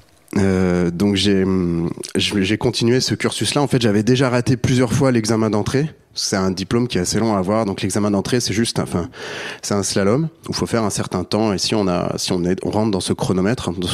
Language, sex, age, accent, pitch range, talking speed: French, male, 30-49, French, 100-125 Hz, 235 wpm